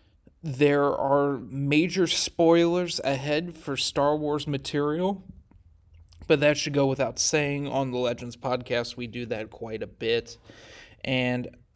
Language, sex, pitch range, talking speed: English, male, 120-140 Hz, 135 wpm